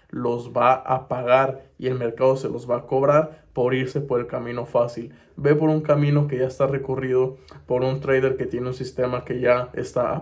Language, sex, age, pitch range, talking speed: Spanish, male, 20-39, 130-155 Hz, 215 wpm